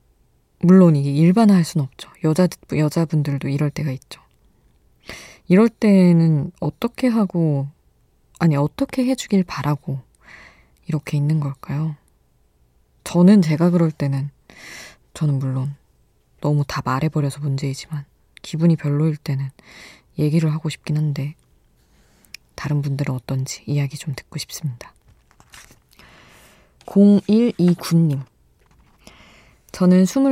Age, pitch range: 20-39, 145-175 Hz